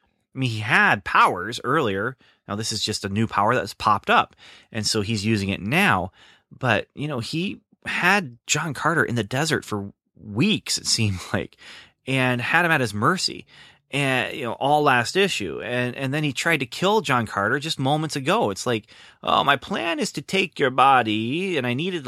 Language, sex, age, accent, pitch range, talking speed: English, male, 30-49, American, 105-140 Hz, 205 wpm